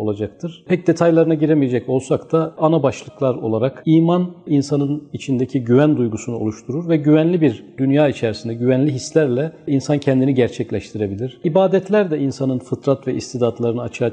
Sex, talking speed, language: male, 135 wpm, Turkish